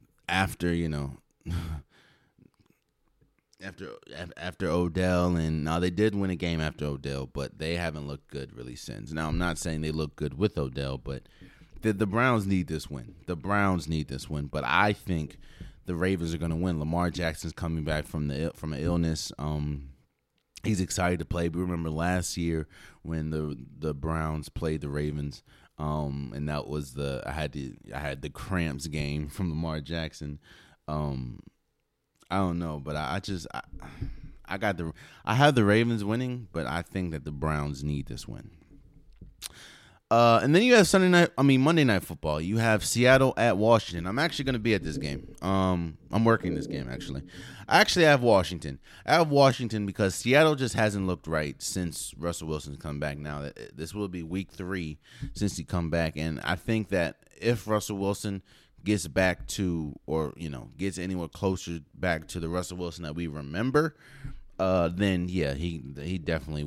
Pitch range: 75-95 Hz